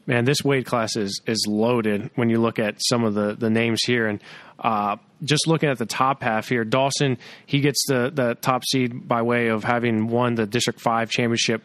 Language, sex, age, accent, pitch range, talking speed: English, male, 20-39, American, 115-135 Hz, 215 wpm